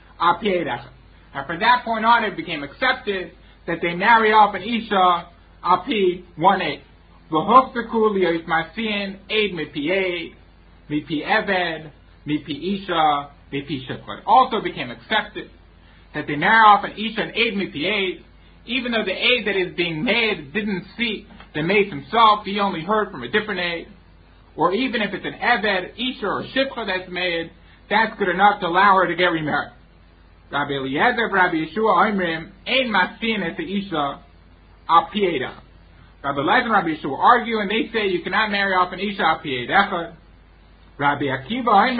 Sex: male